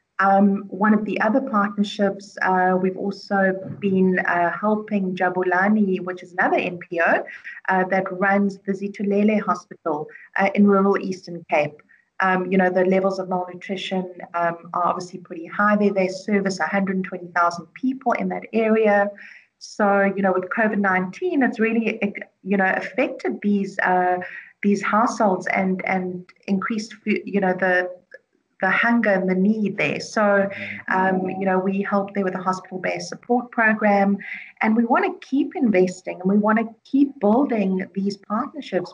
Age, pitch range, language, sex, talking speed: 40-59, 185-215 Hz, English, female, 155 wpm